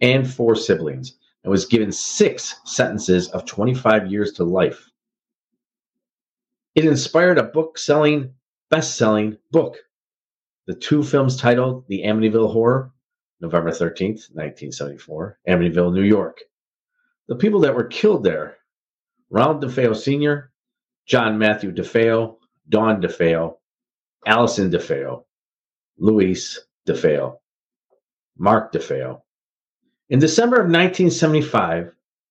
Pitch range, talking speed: 100-150 Hz, 105 wpm